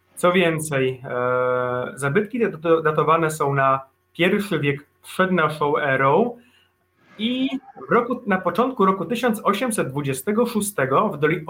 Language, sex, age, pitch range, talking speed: Polish, male, 30-49, 140-195 Hz, 90 wpm